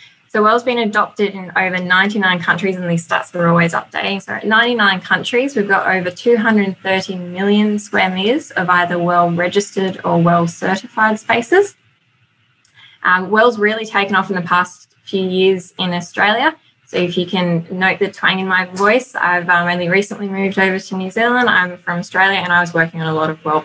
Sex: female